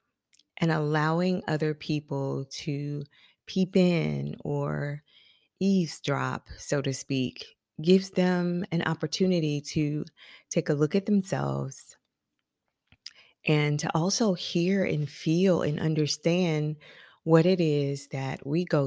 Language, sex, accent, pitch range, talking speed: English, female, American, 150-185 Hz, 115 wpm